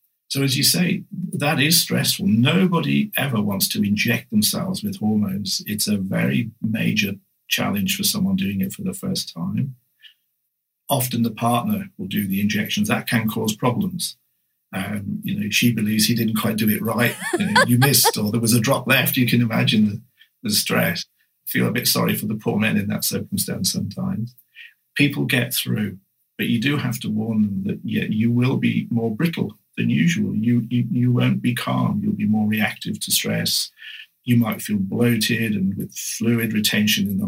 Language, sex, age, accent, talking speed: English, male, 50-69, British, 190 wpm